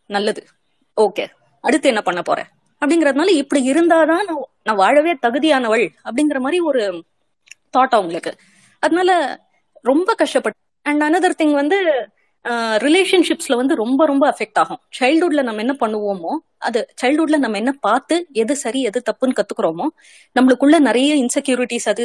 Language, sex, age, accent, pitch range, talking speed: Tamil, female, 20-39, native, 215-300 Hz, 85 wpm